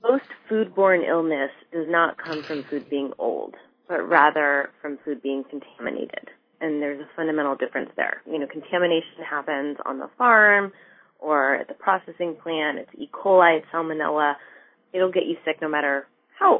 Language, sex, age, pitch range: English, female, 20-39, 150-190 Hz